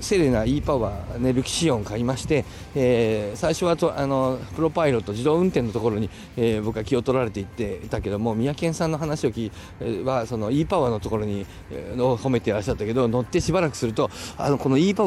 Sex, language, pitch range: male, Japanese, 110-160 Hz